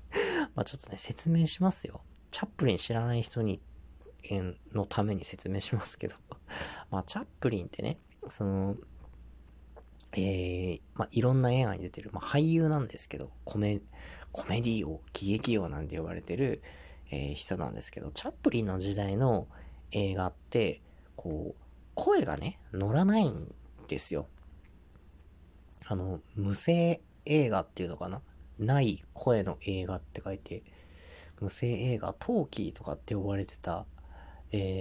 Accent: native